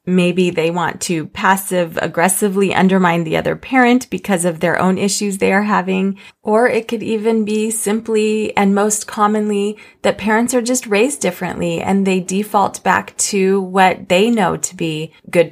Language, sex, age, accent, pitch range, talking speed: English, female, 30-49, American, 170-215 Hz, 165 wpm